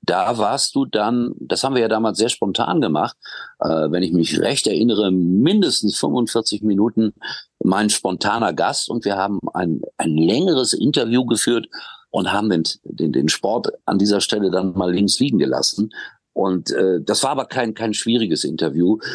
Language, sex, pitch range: German, male, 90-115 Hz